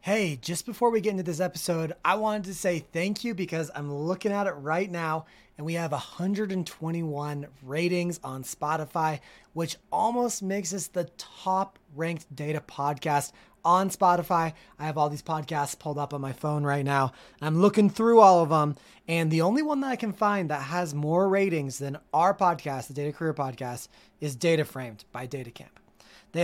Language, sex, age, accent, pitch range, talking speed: English, male, 30-49, American, 145-180 Hz, 185 wpm